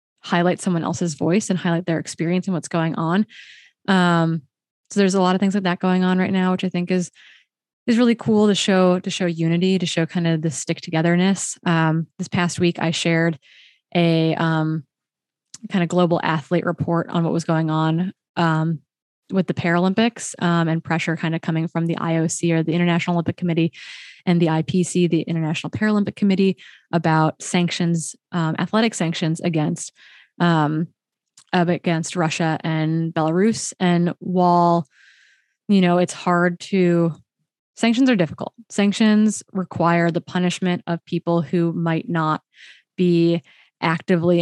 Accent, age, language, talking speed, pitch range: American, 20-39, English, 160 wpm, 165-185 Hz